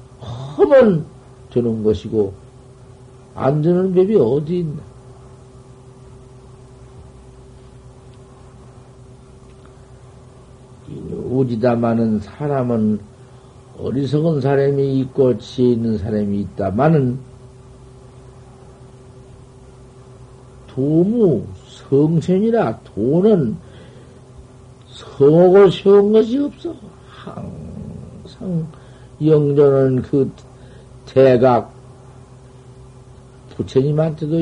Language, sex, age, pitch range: Korean, male, 50-69, 125-165 Hz